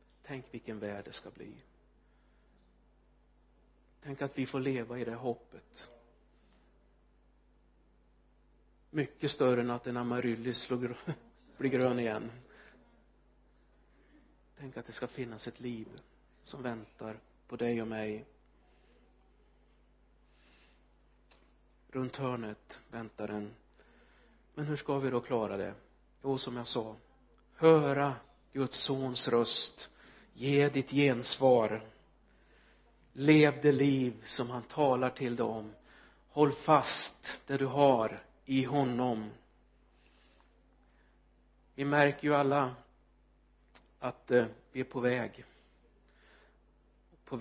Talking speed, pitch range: 105 wpm, 120-140 Hz